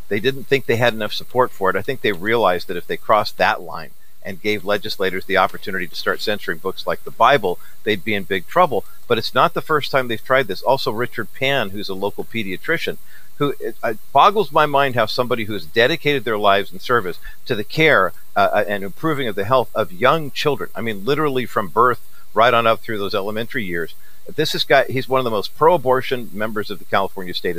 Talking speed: 225 wpm